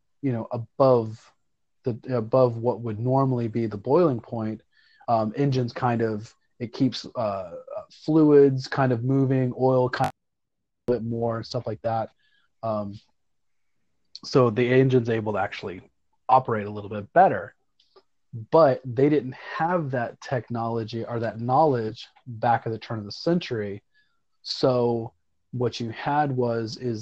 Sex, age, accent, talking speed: male, 30-49, American, 150 wpm